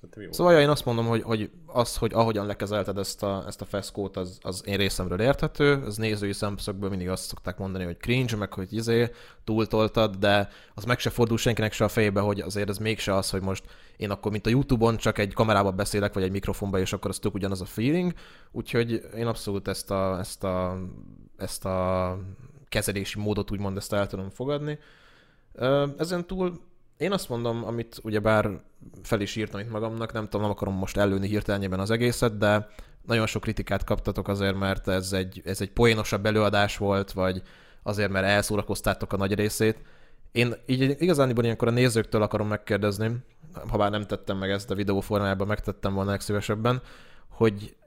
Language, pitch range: Hungarian, 100-115 Hz